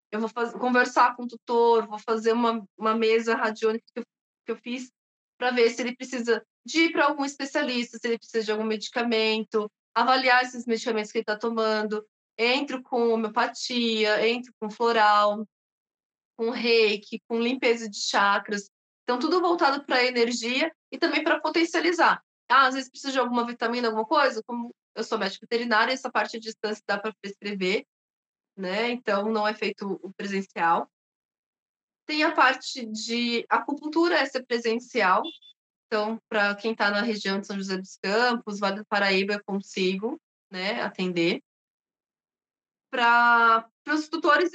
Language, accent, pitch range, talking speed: Portuguese, Brazilian, 215-260 Hz, 160 wpm